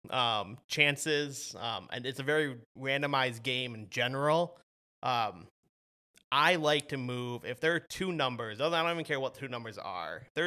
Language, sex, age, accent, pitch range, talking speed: English, male, 30-49, American, 120-150 Hz, 170 wpm